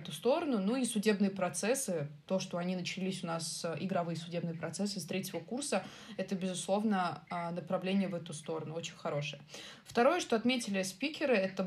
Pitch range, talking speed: 185-220 Hz, 165 wpm